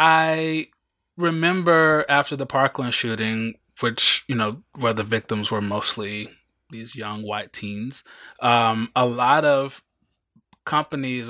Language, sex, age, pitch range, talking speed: English, male, 20-39, 115-140 Hz, 120 wpm